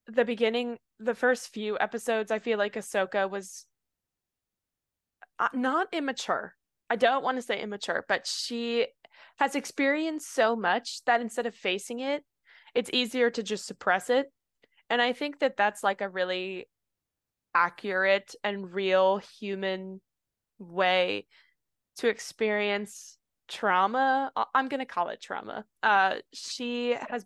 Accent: American